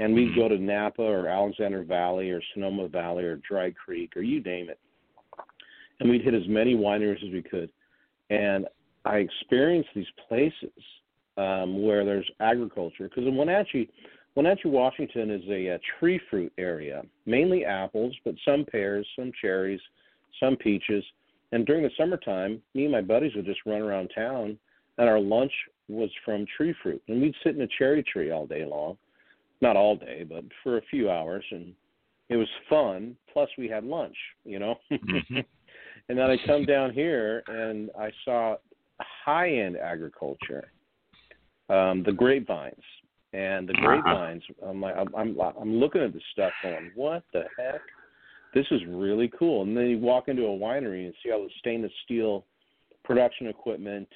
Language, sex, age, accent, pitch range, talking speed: English, male, 50-69, American, 95-120 Hz, 170 wpm